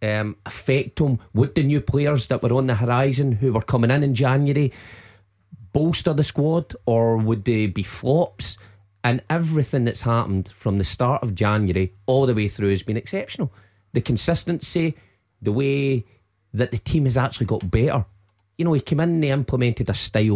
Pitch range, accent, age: 100-125 Hz, British, 30-49